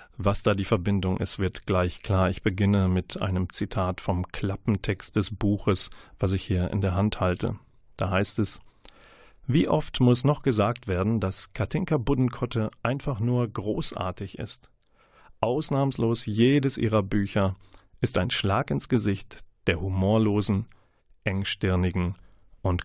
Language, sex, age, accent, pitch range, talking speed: German, male, 40-59, German, 95-120 Hz, 140 wpm